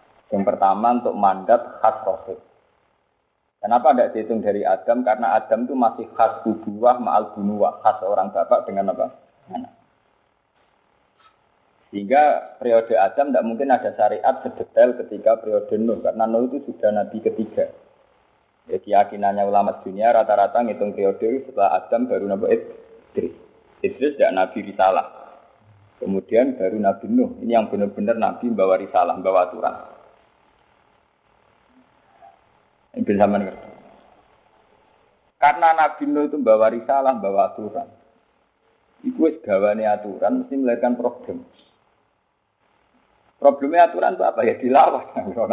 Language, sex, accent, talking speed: Indonesian, male, native, 125 wpm